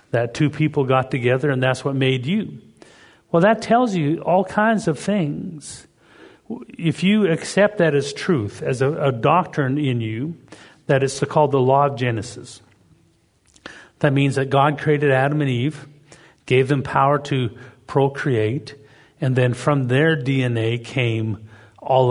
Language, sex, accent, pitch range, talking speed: English, male, American, 120-150 Hz, 155 wpm